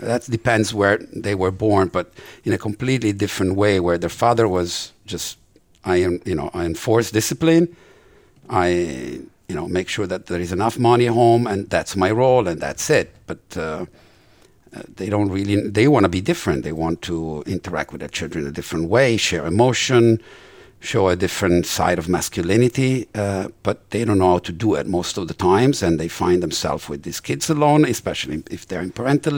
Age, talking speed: 60-79, 200 wpm